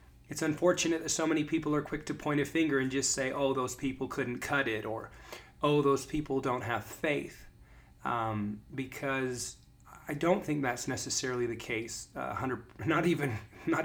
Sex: male